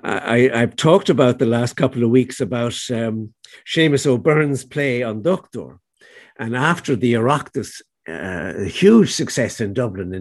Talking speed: 155 wpm